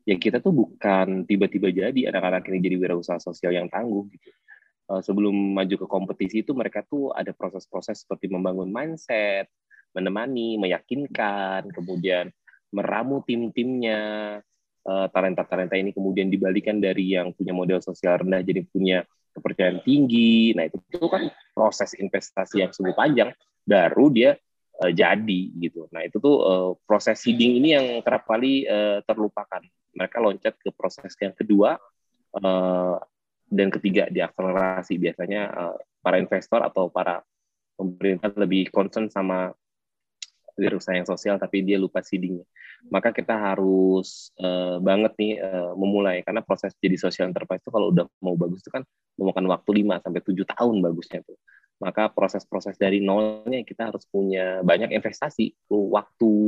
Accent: native